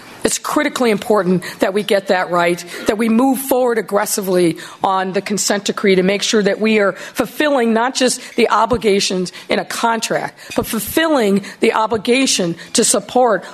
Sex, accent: female, American